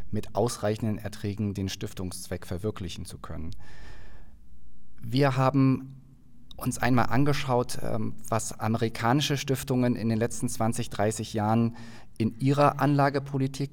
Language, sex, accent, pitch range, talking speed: German, male, German, 100-125 Hz, 110 wpm